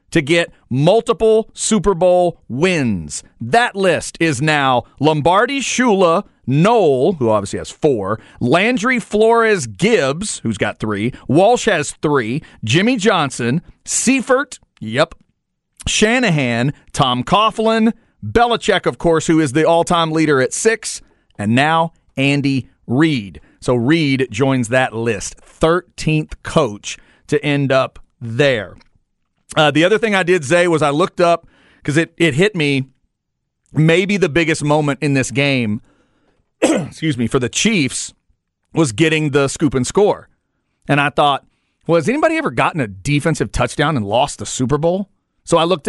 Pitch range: 130-180 Hz